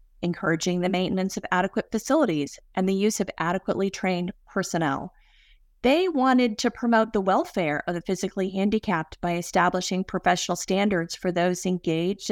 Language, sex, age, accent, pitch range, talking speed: English, female, 30-49, American, 175-205 Hz, 145 wpm